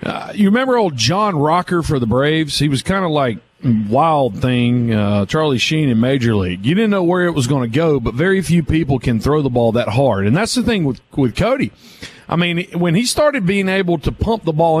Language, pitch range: English, 140-185 Hz